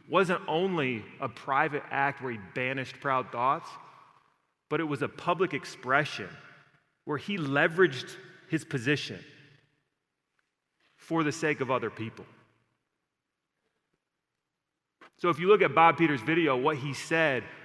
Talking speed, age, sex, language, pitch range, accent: 130 wpm, 30-49, male, English, 140-175 Hz, American